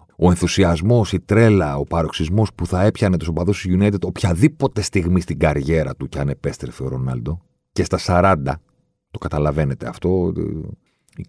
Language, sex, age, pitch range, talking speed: Greek, male, 40-59, 80-110 Hz, 160 wpm